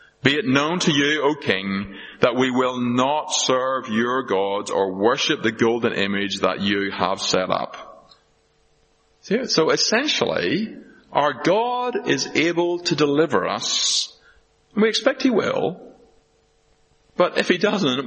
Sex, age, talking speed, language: male, 30-49, 135 wpm, English